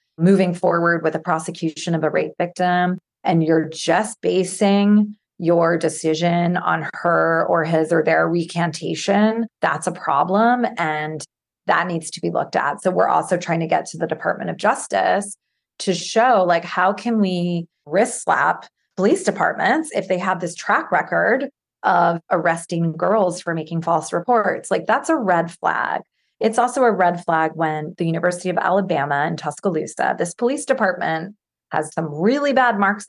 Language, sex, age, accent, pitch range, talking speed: English, female, 30-49, American, 165-195 Hz, 165 wpm